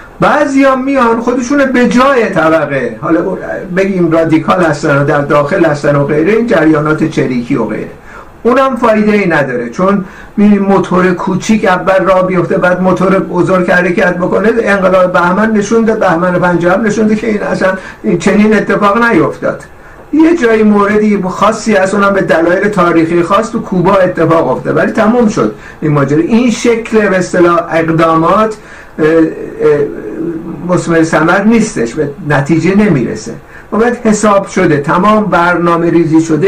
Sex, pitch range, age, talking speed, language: male, 155-205 Hz, 50-69, 145 wpm, Persian